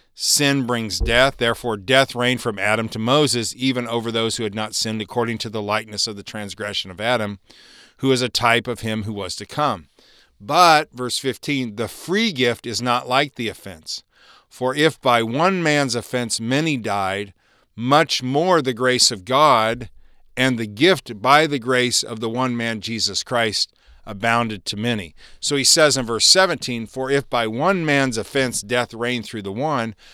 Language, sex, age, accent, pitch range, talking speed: English, male, 40-59, American, 110-135 Hz, 185 wpm